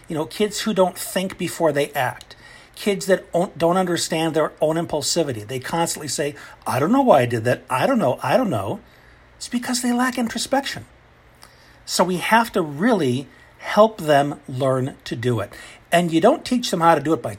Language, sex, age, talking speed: English, male, 50-69, 205 wpm